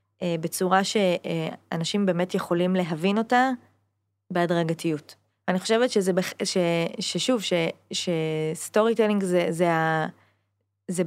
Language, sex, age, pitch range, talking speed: Hebrew, female, 20-39, 165-195 Hz, 100 wpm